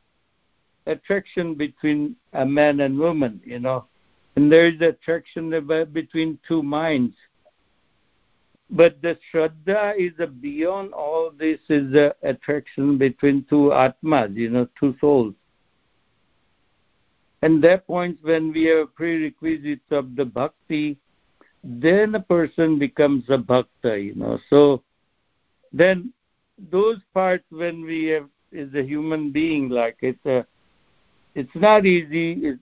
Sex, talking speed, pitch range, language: male, 125 wpm, 135-165 Hz, English